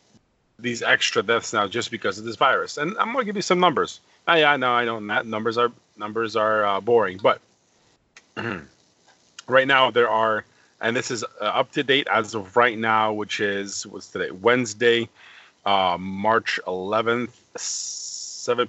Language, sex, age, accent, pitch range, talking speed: English, male, 30-49, American, 110-125 Hz, 175 wpm